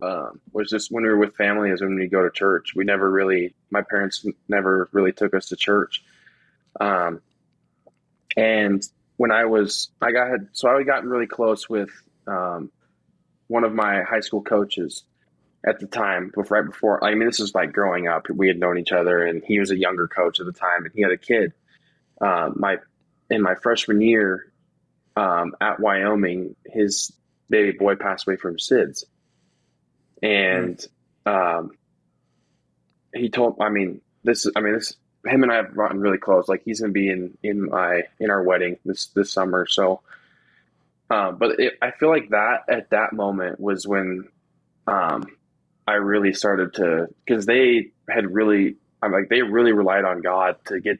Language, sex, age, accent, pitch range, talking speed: English, male, 20-39, American, 95-110 Hz, 185 wpm